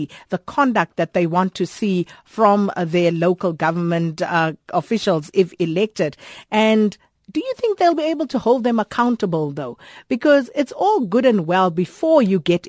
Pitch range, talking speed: 175-235 Hz, 170 wpm